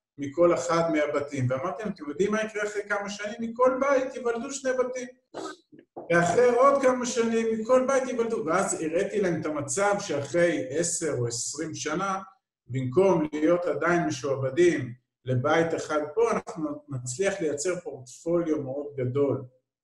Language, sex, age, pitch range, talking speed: Hebrew, male, 50-69, 130-180 Hz, 140 wpm